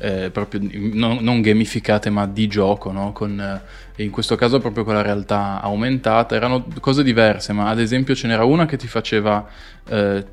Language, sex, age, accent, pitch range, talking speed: Italian, male, 20-39, native, 105-115 Hz, 185 wpm